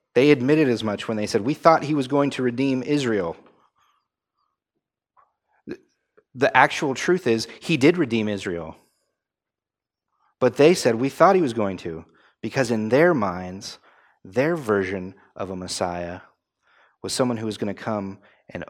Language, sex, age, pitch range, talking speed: English, male, 30-49, 100-135 Hz, 155 wpm